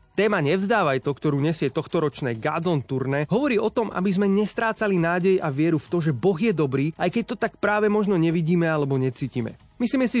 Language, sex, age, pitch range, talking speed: Slovak, male, 30-49, 135-185 Hz, 200 wpm